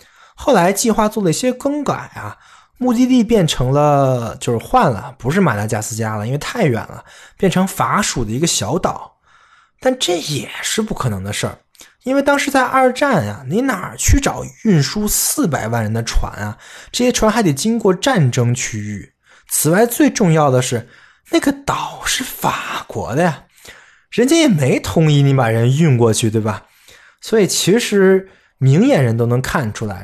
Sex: male